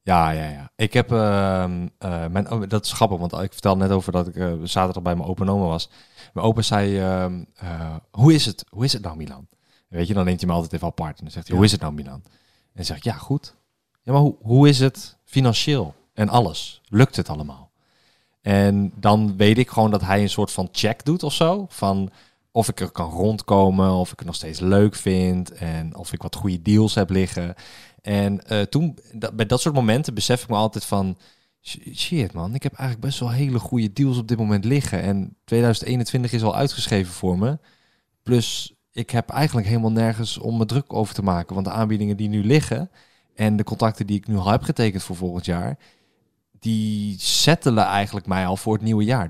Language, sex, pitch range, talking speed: Dutch, male, 95-120 Hz, 225 wpm